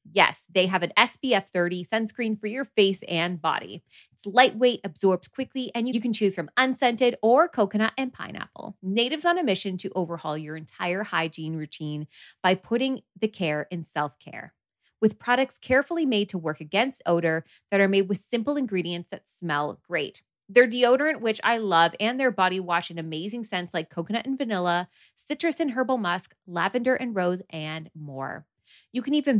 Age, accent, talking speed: 20-39, American, 180 wpm